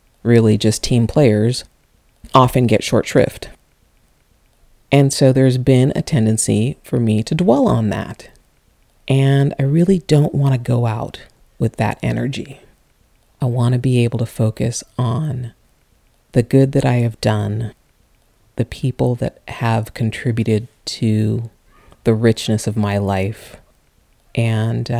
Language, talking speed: English, 135 wpm